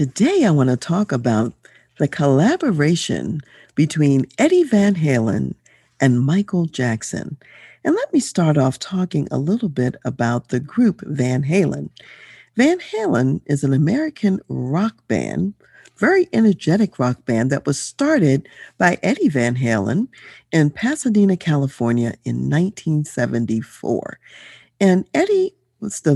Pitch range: 125-195 Hz